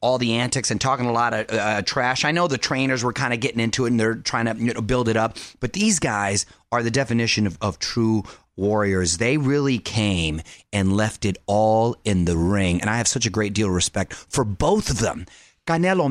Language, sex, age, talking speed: English, male, 30-49, 225 wpm